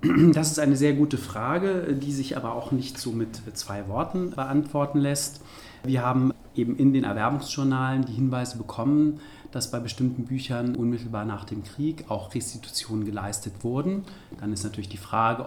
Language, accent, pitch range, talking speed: German, German, 110-140 Hz, 165 wpm